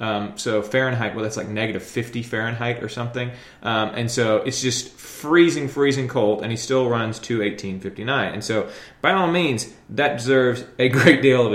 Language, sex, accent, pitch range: English, male, American, 110-140 Hz